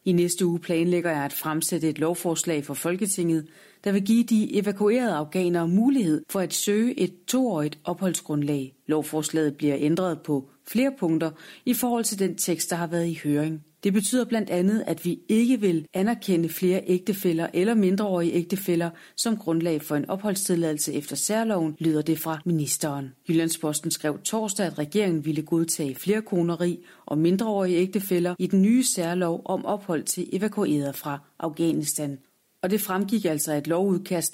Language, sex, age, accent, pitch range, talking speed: Danish, female, 30-49, native, 155-200 Hz, 165 wpm